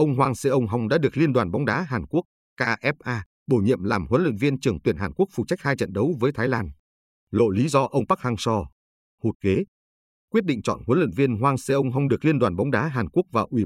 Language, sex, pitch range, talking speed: Vietnamese, male, 100-135 Hz, 250 wpm